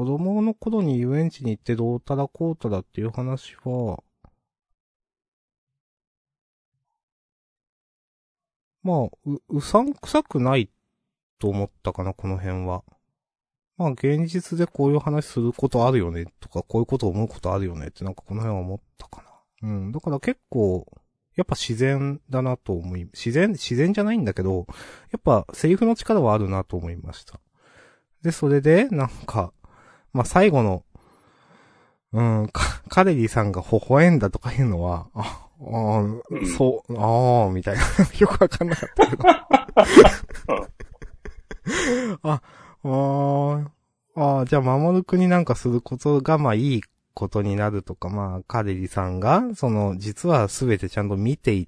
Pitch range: 100-155 Hz